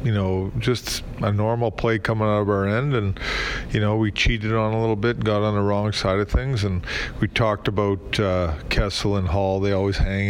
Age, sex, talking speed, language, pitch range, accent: 40-59, male, 225 wpm, English, 100-115 Hz, American